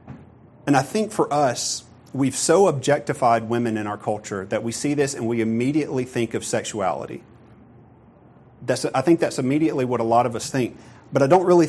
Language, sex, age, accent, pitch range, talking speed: English, male, 40-59, American, 115-135 Hz, 190 wpm